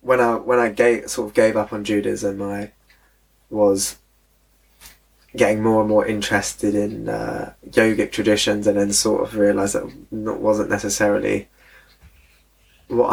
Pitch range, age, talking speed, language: 100-115 Hz, 20-39, 145 wpm, English